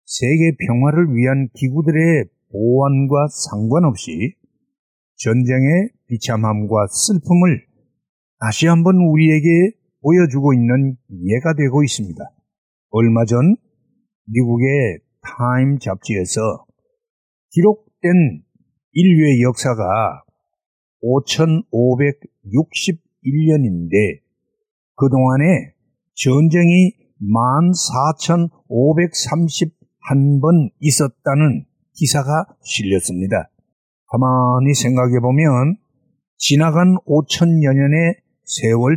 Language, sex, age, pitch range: Korean, male, 50-69, 120-165 Hz